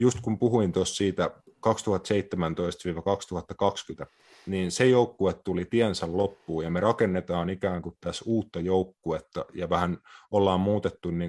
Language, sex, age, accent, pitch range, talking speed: Finnish, male, 30-49, native, 85-105 Hz, 130 wpm